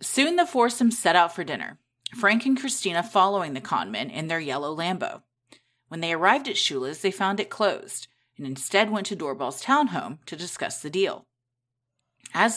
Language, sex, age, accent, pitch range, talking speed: English, female, 30-49, American, 150-220 Hz, 180 wpm